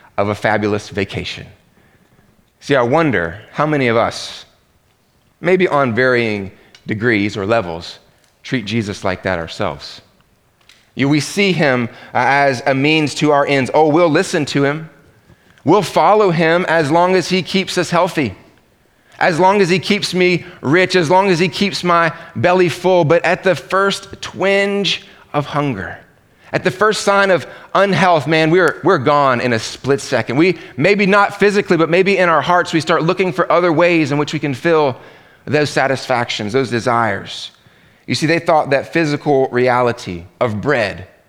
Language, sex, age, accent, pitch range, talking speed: English, male, 30-49, American, 125-175 Hz, 170 wpm